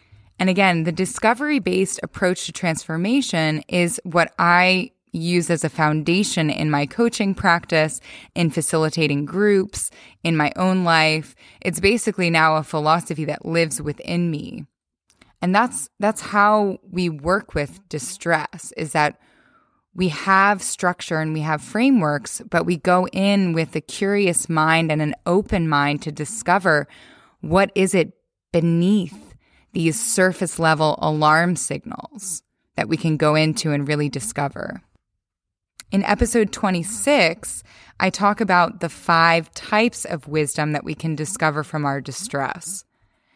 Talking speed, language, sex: 135 wpm, English, female